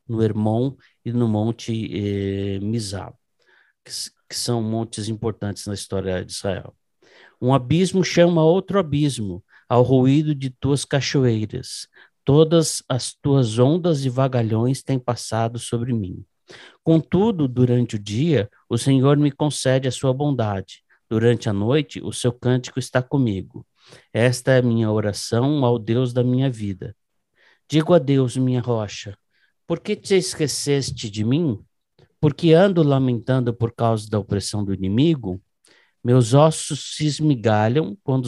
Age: 60-79